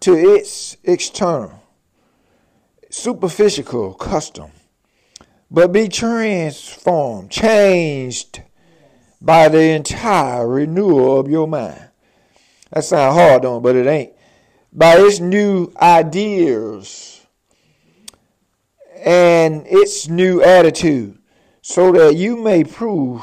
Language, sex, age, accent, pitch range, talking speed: English, male, 50-69, American, 145-205 Hz, 95 wpm